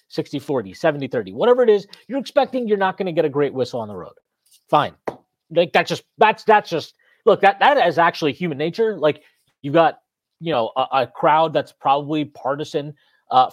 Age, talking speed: 30-49, 205 wpm